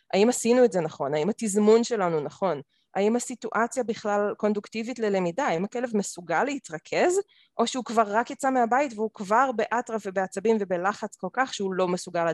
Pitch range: 160-220 Hz